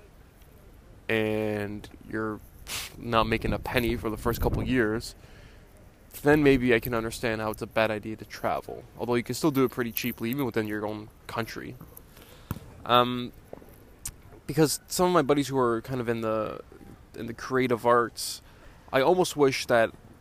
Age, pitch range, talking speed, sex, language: 20-39, 105-125 Hz, 170 wpm, male, English